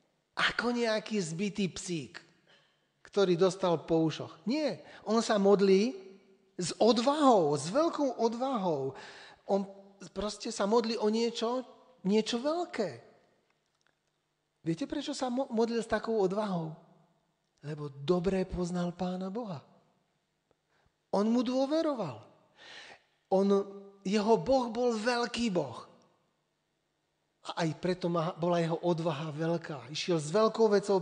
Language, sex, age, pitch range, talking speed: Slovak, male, 40-59, 165-220 Hz, 110 wpm